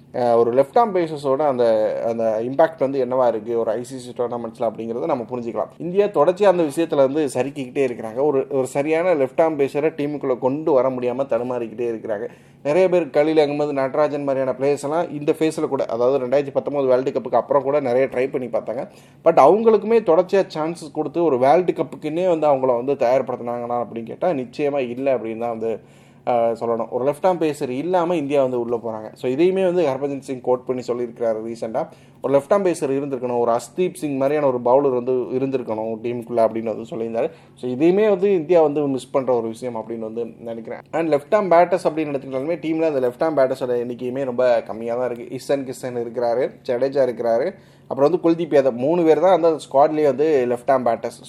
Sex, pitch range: male, 120-155 Hz